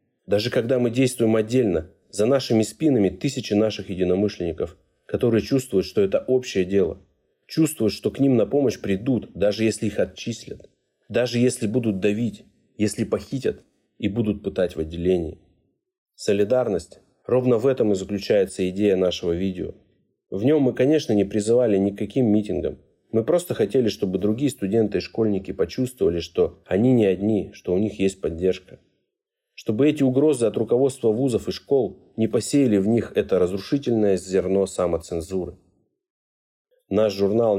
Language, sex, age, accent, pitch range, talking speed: Russian, male, 30-49, native, 95-125 Hz, 150 wpm